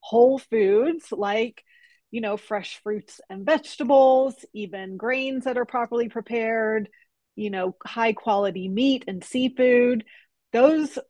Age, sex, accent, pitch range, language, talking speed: 30-49, female, American, 195-245 Hz, English, 125 wpm